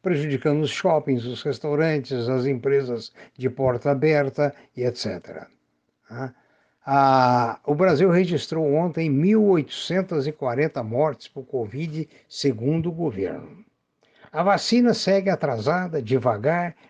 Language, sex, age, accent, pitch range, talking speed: Portuguese, male, 60-79, Brazilian, 125-175 Hz, 100 wpm